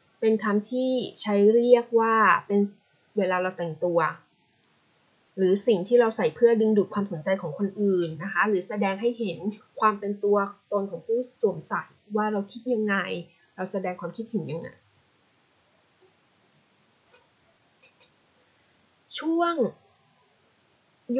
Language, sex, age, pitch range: Thai, female, 20-39, 180-235 Hz